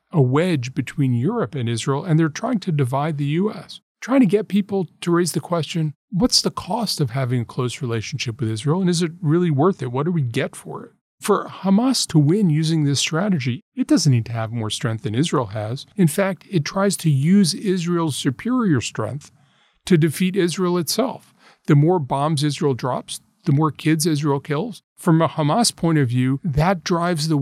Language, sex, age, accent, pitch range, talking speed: English, male, 40-59, American, 135-175 Hz, 200 wpm